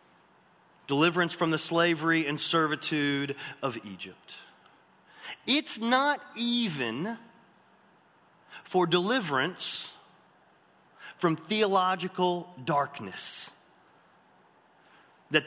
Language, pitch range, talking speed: English, 150-190 Hz, 65 wpm